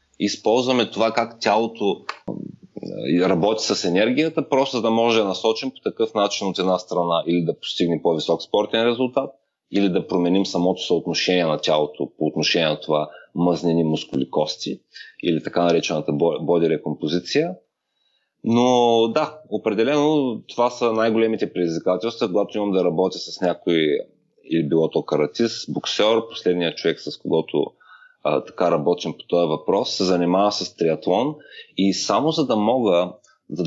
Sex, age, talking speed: male, 30-49, 145 wpm